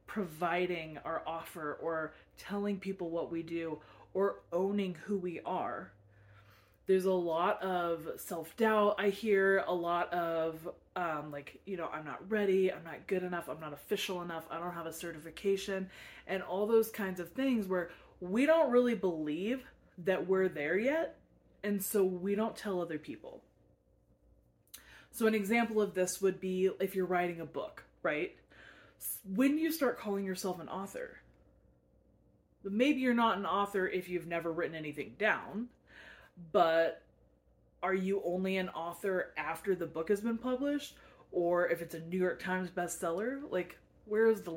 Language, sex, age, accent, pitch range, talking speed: English, female, 20-39, American, 165-210 Hz, 165 wpm